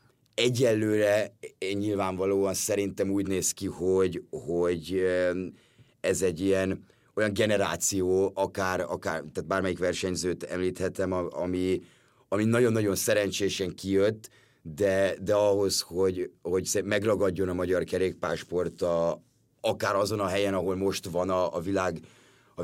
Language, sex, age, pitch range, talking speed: Hungarian, male, 30-49, 90-100 Hz, 120 wpm